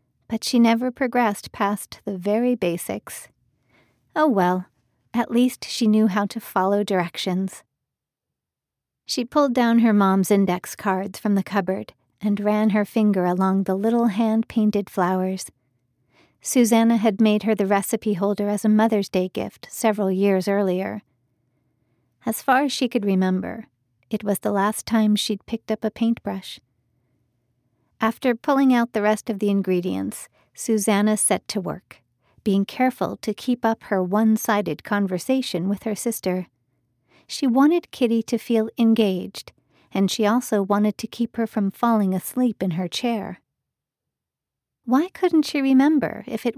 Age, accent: 40-59, American